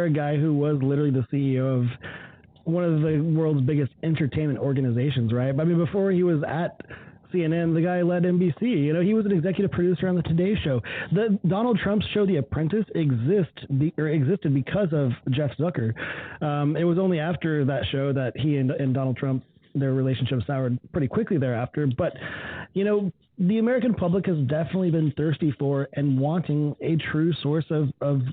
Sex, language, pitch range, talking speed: male, English, 135-170 Hz, 185 wpm